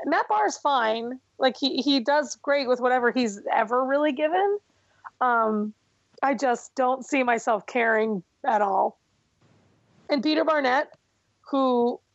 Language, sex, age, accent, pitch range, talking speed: English, female, 30-49, American, 240-310 Hz, 140 wpm